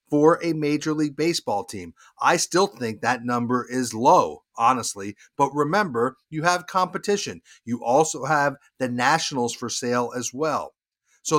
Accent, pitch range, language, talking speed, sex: American, 125-165 Hz, English, 155 wpm, male